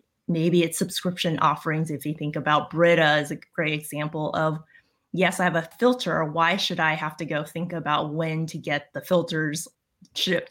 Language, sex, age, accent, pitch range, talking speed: English, female, 20-39, American, 155-185 Hz, 190 wpm